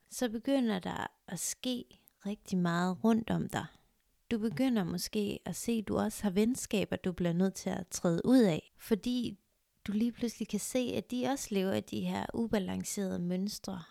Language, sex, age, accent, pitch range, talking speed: Danish, female, 30-49, native, 185-235 Hz, 185 wpm